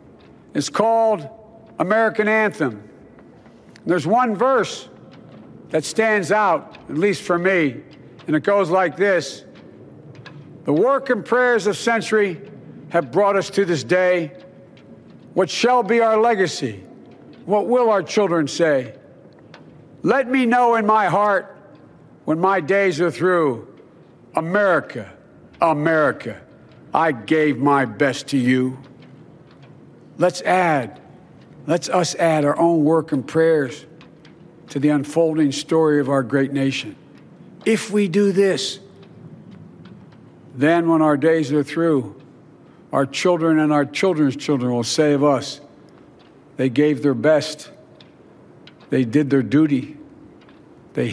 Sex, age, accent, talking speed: male, 60-79, American, 125 wpm